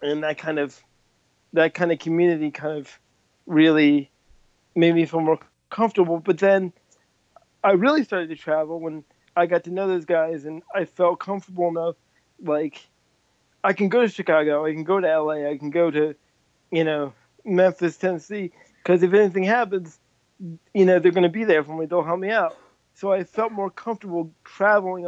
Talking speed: 185 wpm